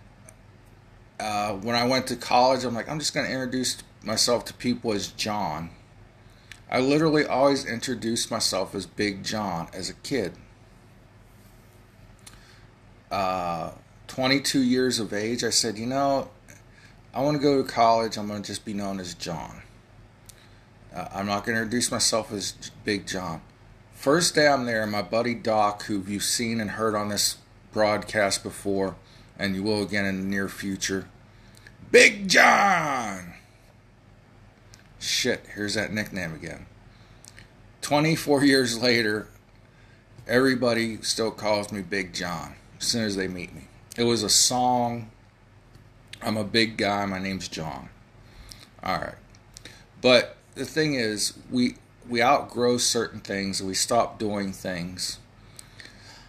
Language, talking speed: English, 145 wpm